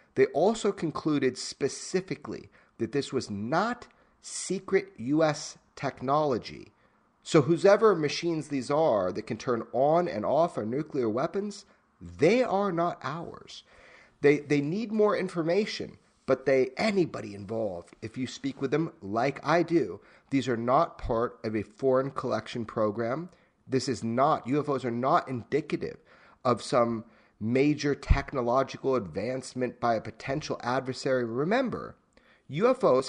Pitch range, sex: 130-180 Hz, male